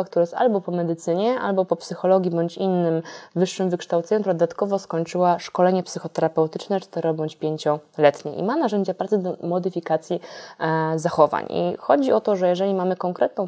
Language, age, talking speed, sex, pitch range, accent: Polish, 20-39, 150 wpm, female, 170-195 Hz, native